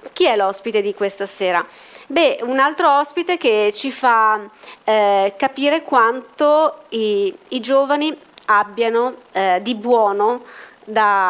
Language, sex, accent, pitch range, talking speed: Italian, female, native, 200-250 Hz, 125 wpm